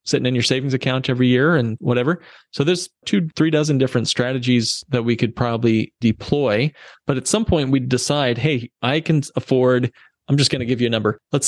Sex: male